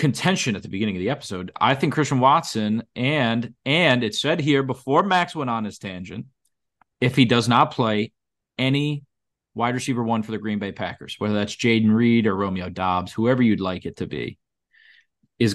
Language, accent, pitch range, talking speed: English, American, 100-120 Hz, 195 wpm